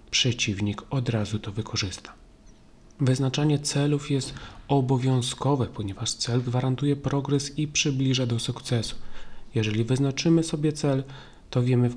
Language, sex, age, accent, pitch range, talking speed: Polish, male, 40-59, native, 110-135 Hz, 120 wpm